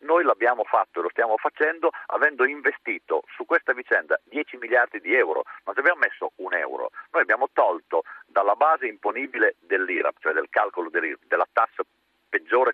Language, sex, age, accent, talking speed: Italian, male, 50-69, native, 165 wpm